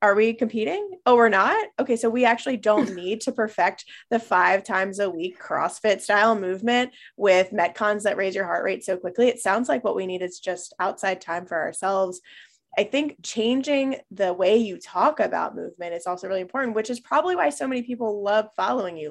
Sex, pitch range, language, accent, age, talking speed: female, 190-240 Hz, English, American, 20-39, 205 wpm